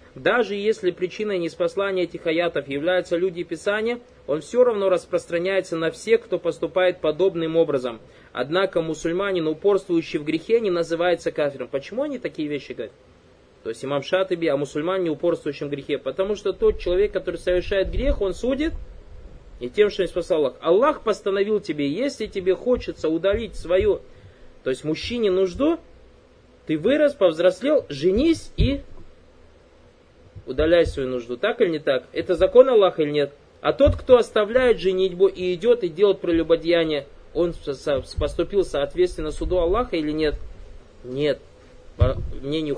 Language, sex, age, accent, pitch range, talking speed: Russian, male, 20-39, native, 145-195 Hz, 150 wpm